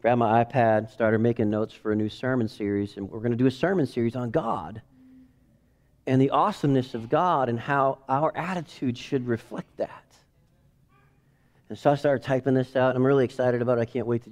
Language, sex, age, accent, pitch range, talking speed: English, male, 40-59, American, 130-195 Hz, 210 wpm